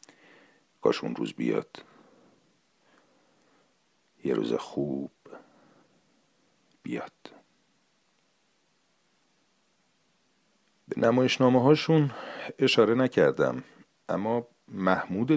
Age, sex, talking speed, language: 50-69, male, 55 wpm, Persian